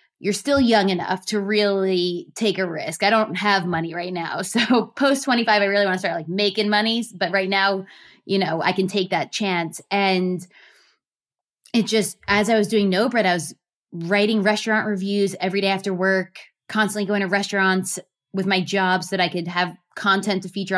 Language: English